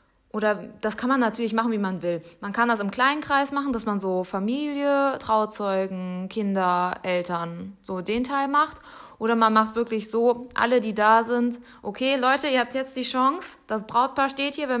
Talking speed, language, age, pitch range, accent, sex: 195 wpm, German, 20-39, 210-260 Hz, German, female